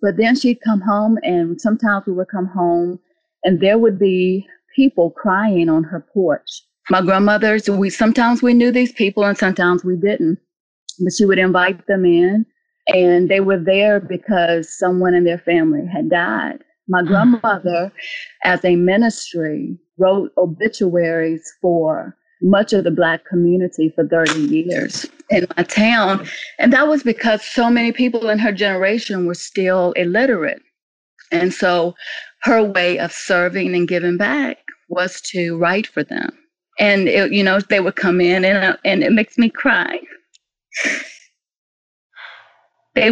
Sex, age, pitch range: female, 30-49, 180-235 Hz